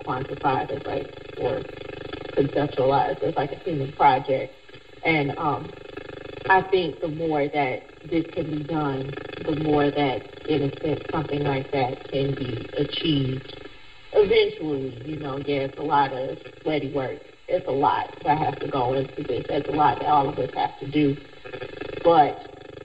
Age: 40-59